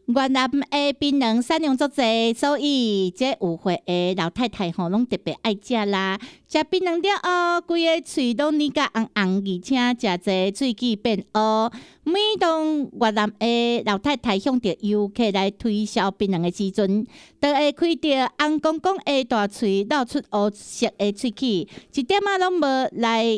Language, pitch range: Chinese, 195-275 Hz